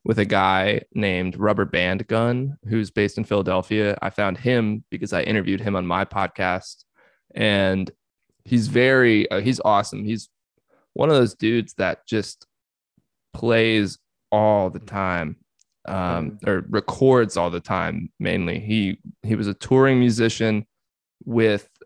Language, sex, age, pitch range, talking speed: English, male, 20-39, 95-115 Hz, 145 wpm